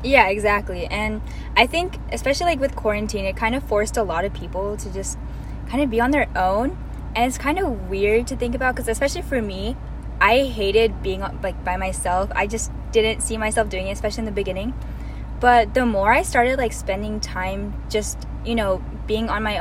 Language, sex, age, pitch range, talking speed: English, female, 10-29, 195-235 Hz, 210 wpm